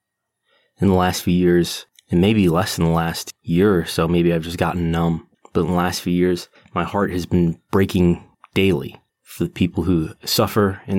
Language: English